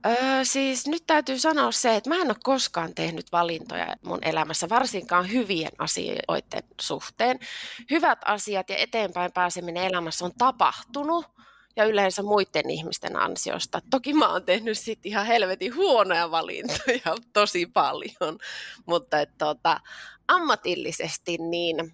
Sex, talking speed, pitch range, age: female, 130 wpm, 175-245 Hz, 20-39